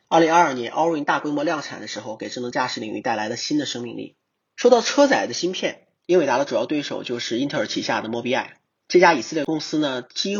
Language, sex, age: Chinese, male, 30-49